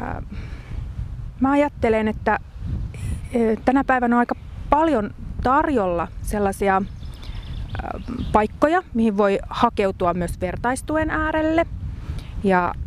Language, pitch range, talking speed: Finnish, 195-250 Hz, 85 wpm